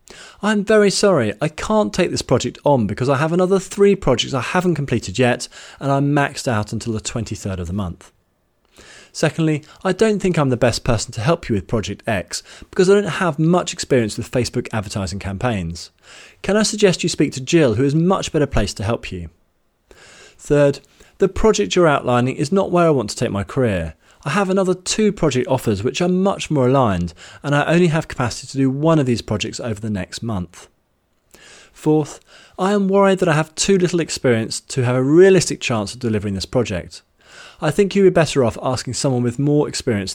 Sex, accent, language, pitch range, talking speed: male, British, English, 110-175 Hz, 210 wpm